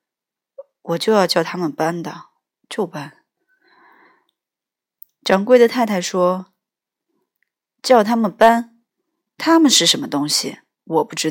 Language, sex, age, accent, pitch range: Chinese, female, 20-39, native, 170-280 Hz